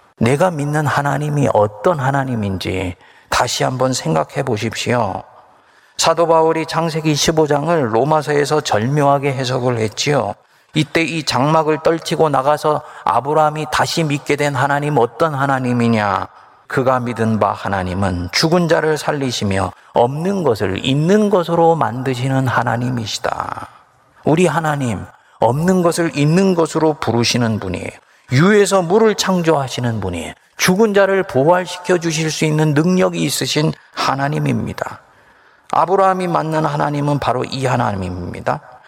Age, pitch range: 40-59, 120-170 Hz